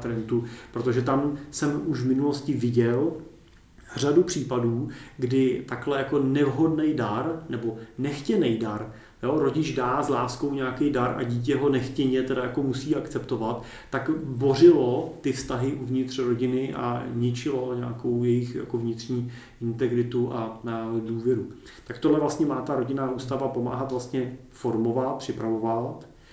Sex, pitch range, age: male, 120-140 Hz, 40-59